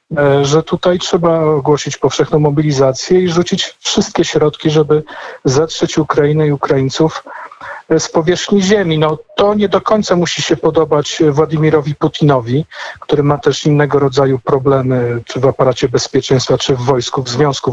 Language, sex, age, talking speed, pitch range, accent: Polish, male, 50-69, 145 wpm, 130-155 Hz, native